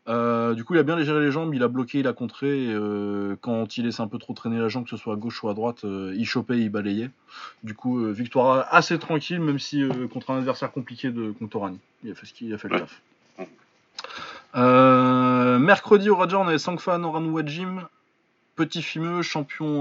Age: 20-39